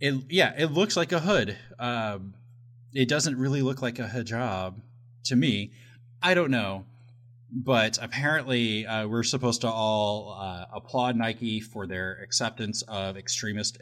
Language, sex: English, male